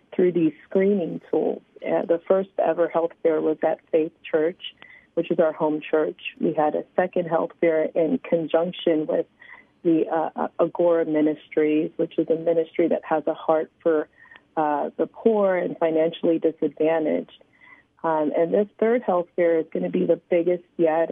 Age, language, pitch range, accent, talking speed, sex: 40-59, English, 160-180 Hz, American, 170 wpm, female